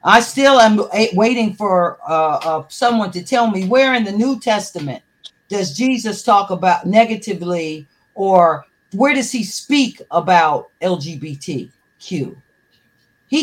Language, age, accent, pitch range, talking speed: English, 50-69, American, 175-225 Hz, 130 wpm